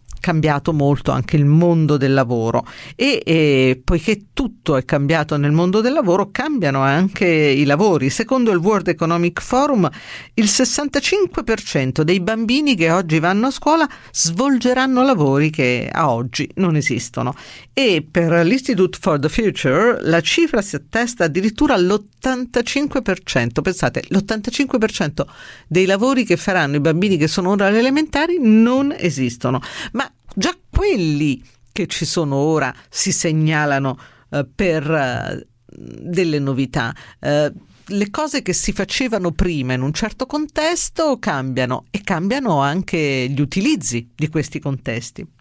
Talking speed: 130 wpm